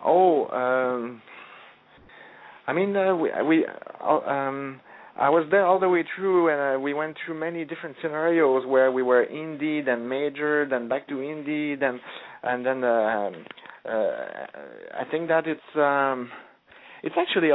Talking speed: 155 wpm